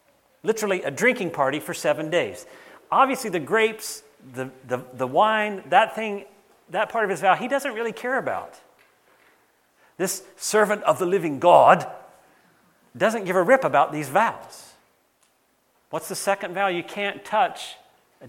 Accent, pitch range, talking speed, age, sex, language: American, 170-225 Hz, 155 wpm, 40-59, male, English